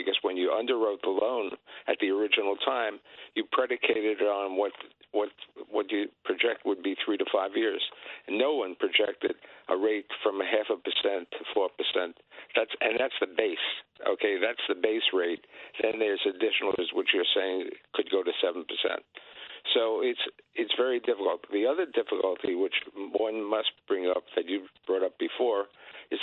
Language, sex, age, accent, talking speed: English, male, 60-79, American, 185 wpm